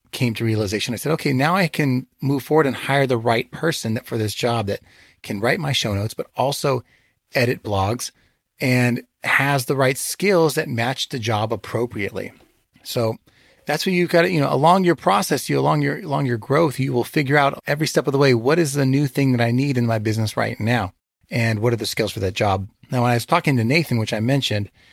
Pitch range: 115-145 Hz